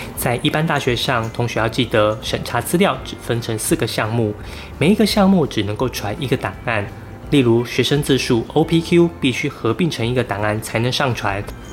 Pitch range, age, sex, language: 110-140 Hz, 20-39, male, Chinese